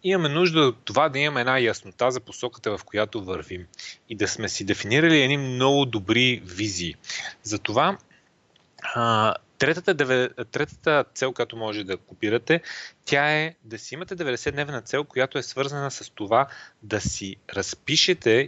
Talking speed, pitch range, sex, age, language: 145 wpm, 110-145 Hz, male, 30-49, Bulgarian